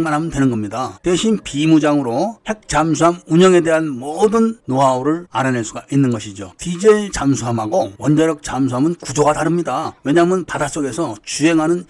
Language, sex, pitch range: Korean, male, 130-180 Hz